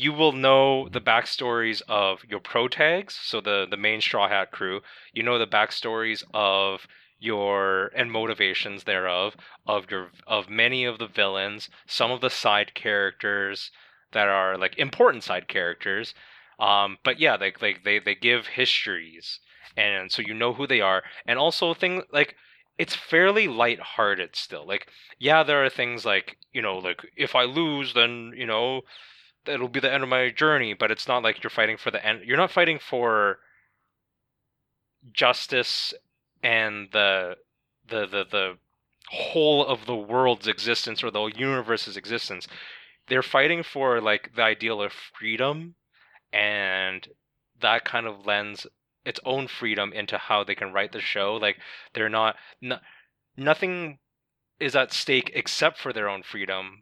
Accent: American